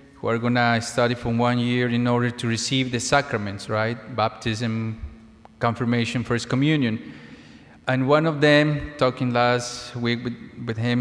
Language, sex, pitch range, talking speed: English, male, 115-135 Hz, 155 wpm